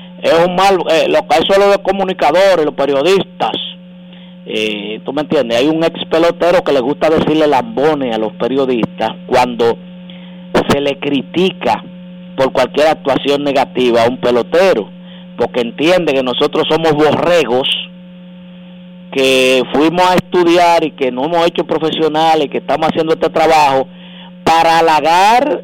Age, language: 50-69, Spanish